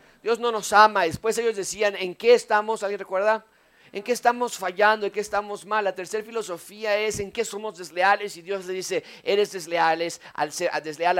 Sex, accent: male, Mexican